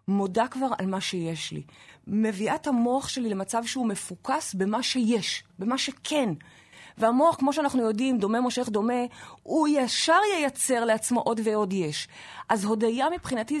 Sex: female